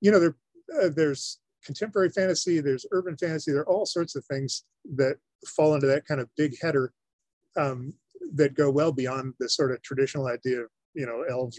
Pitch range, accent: 125-150 Hz, American